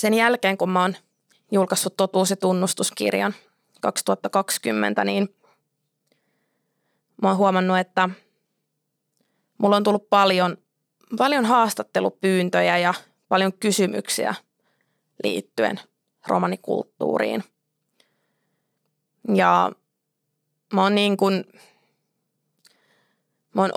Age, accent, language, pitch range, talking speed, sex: 20-39, native, Finnish, 145-200 Hz, 70 wpm, female